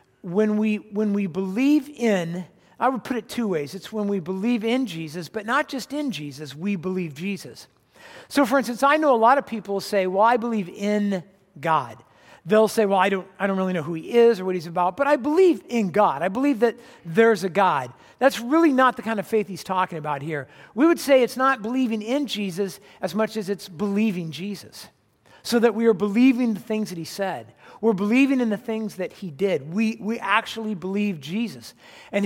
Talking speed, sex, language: 220 wpm, male, English